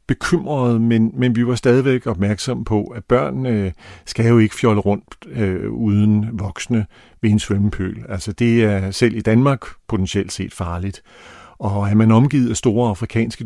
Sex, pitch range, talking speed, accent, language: male, 105-135 Hz, 170 wpm, native, Danish